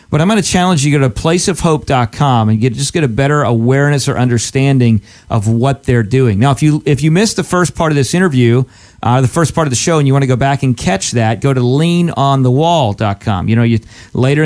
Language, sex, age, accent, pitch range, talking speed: English, male, 40-59, American, 125-160 Hz, 240 wpm